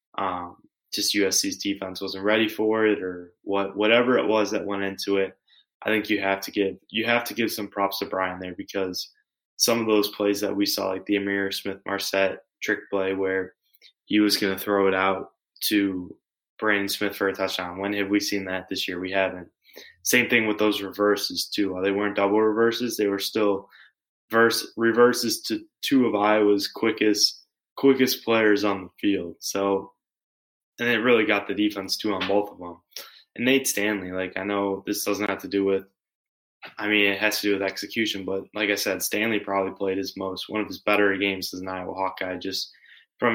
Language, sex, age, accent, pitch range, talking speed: English, male, 20-39, American, 95-105 Hz, 205 wpm